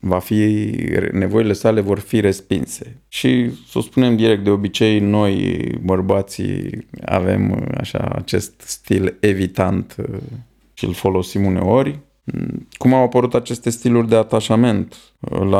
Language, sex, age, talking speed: Romanian, male, 20-39, 125 wpm